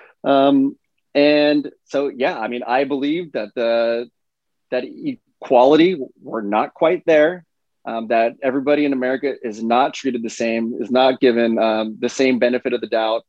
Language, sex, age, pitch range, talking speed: English, male, 20-39, 115-145 Hz, 165 wpm